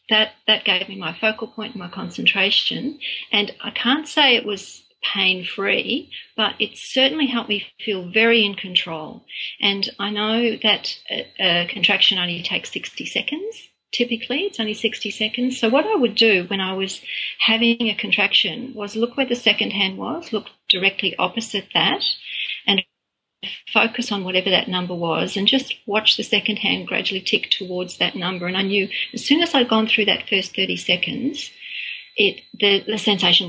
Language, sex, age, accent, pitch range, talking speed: English, female, 40-59, Australian, 195-235 Hz, 175 wpm